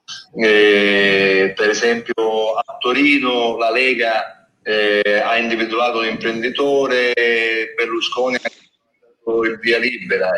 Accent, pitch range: native, 110-160 Hz